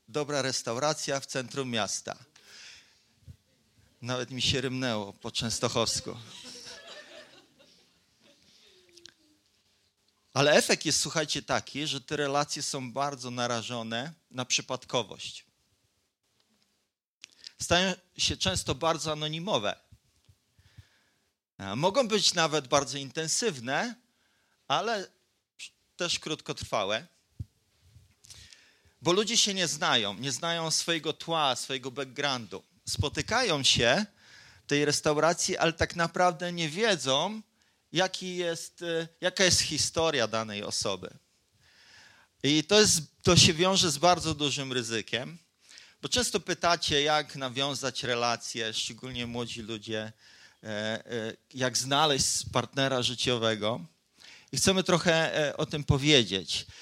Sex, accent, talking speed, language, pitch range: male, native, 100 wpm, Polish, 115-165 Hz